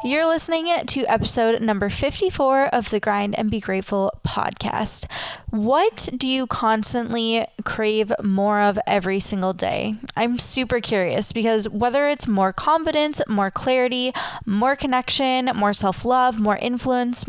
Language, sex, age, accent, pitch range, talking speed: English, female, 10-29, American, 205-250 Hz, 135 wpm